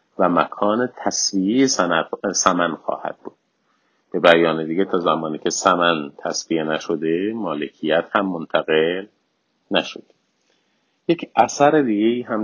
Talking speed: 110 wpm